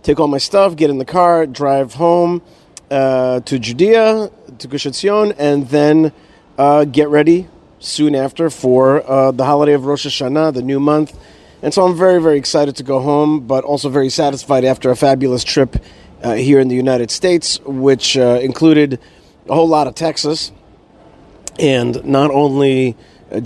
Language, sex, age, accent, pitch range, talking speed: English, male, 30-49, American, 130-160 Hz, 170 wpm